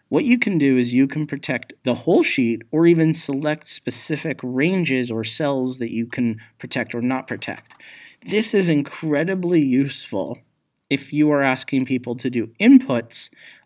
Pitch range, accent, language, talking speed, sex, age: 120-150 Hz, American, English, 165 wpm, male, 30-49